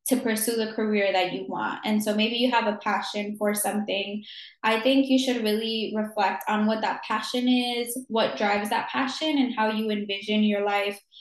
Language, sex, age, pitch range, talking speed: English, female, 10-29, 205-235 Hz, 200 wpm